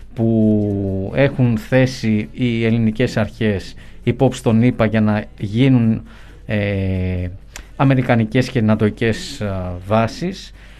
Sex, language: male, Greek